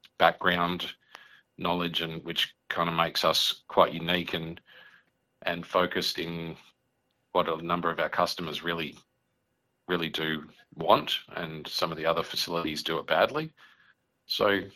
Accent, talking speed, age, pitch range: Australian, 140 wpm, 40-59, 80-90 Hz